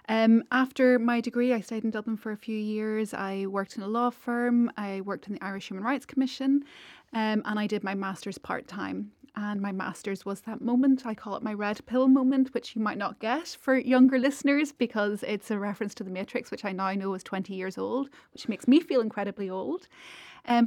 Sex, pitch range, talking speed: female, 200-250 Hz, 225 wpm